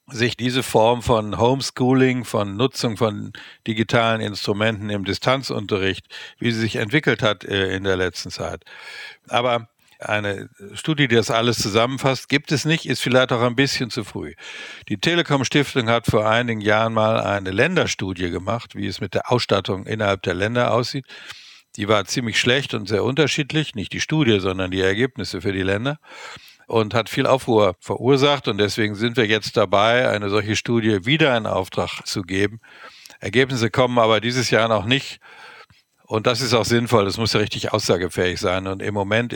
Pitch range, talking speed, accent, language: 100-125 Hz, 175 wpm, German, German